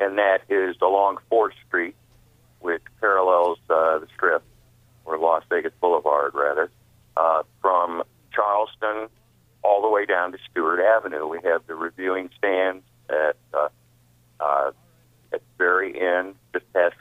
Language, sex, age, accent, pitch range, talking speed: English, male, 50-69, American, 80-110 Hz, 140 wpm